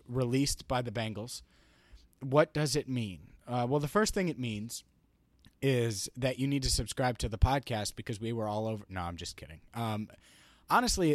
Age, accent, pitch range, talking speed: 30-49, American, 100-145 Hz, 190 wpm